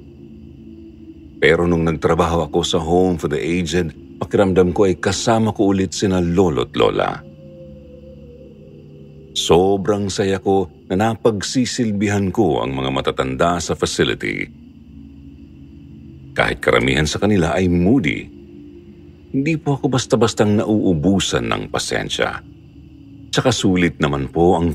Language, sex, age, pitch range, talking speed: Filipino, male, 50-69, 75-100 Hz, 115 wpm